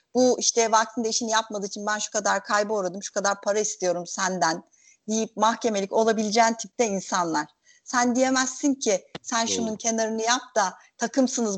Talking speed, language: 155 wpm, Turkish